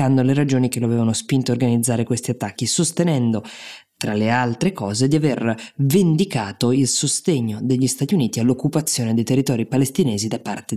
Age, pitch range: 20-39, 120-145 Hz